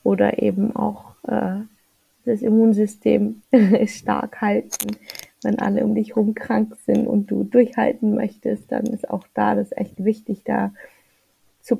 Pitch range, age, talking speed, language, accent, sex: 200-235 Hz, 20-39, 150 wpm, German, German, female